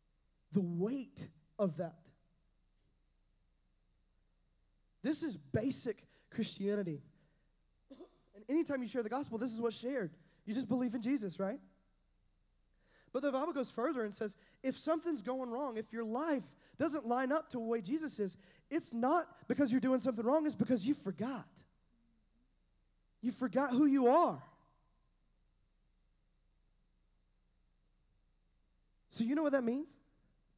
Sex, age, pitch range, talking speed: male, 20-39, 170-260 Hz, 135 wpm